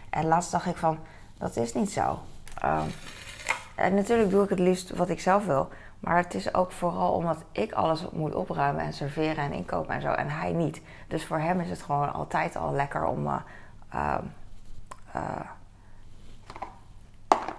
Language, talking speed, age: Dutch, 170 wpm, 20-39